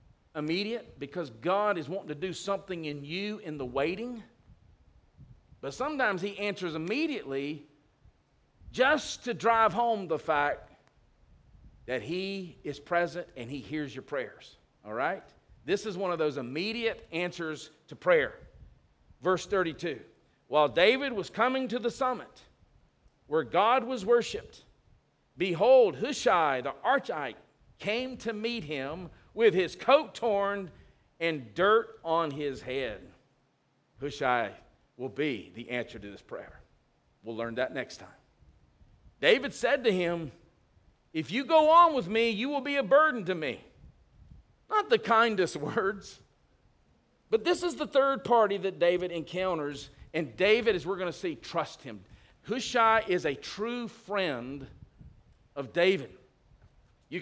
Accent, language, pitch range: American, English, 145-230 Hz